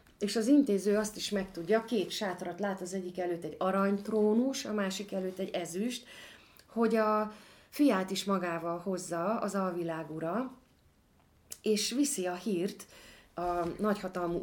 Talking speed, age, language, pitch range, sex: 135 wpm, 30-49, Hungarian, 180-225 Hz, female